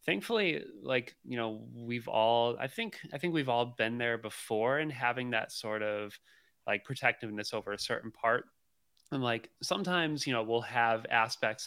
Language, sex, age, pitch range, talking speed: English, male, 20-39, 105-120 Hz, 175 wpm